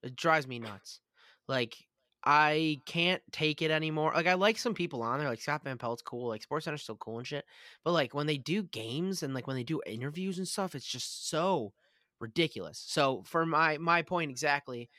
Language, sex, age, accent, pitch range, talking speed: English, male, 20-39, American, 125-165 Hz, 210 wpm